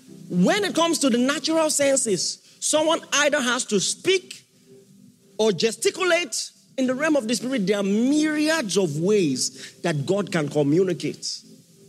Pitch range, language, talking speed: 190-260 Hz, English, 145 wpm